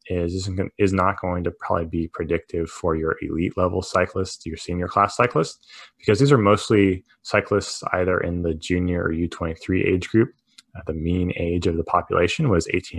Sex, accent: male, American